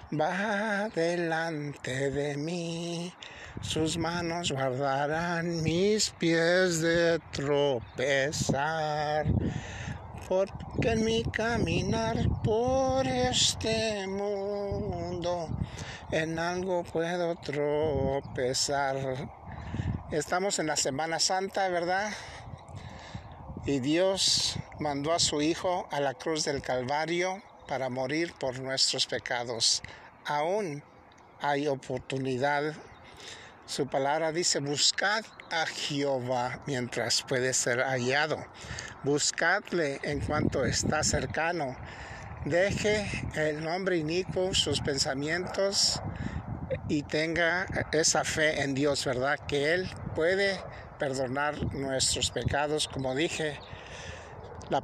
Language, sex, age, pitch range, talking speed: Spanish, male, 60-79, 135-170 Hz, 90 wpm